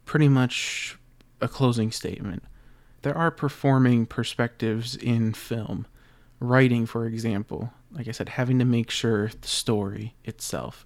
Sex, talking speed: male, 135 wpm